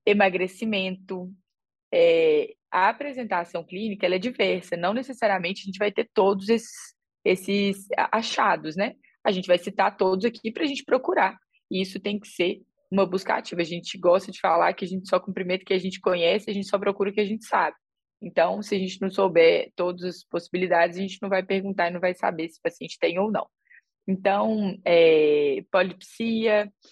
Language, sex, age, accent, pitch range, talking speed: English, female, 20-39, Brazilian, 185-225 Hz, 195 wpm